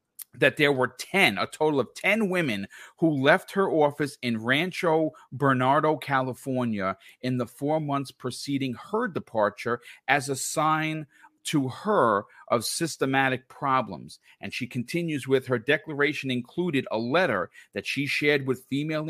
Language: English